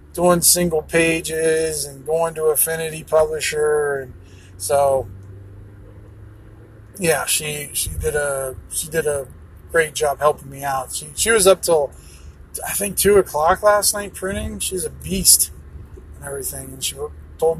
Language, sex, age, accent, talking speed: English, male, 30-49, American, 145 wpm